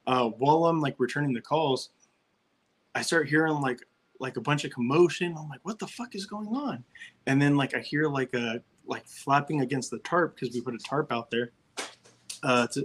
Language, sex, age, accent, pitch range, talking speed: English, male, 20-39, American, 125-150 Hz, 205 wpm